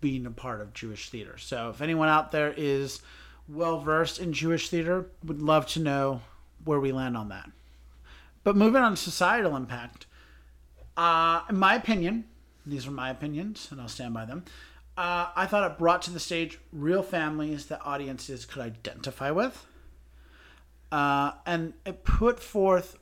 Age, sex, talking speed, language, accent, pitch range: 40-59, male, 165 wpm, English, American, 105-160 Hz